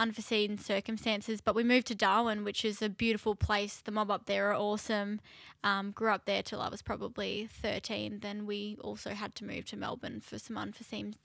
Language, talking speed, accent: English, 205 wpm, Australian